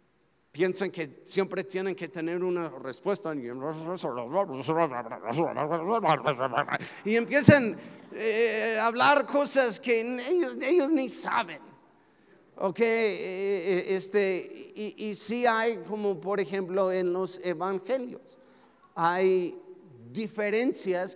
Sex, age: male, 50-69